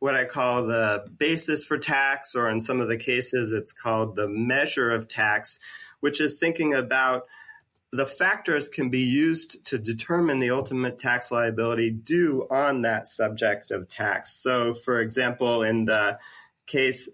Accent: American